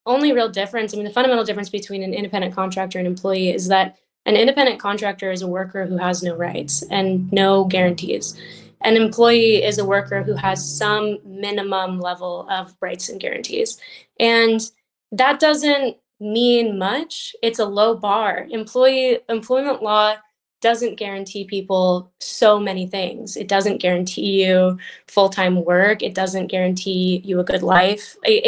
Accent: American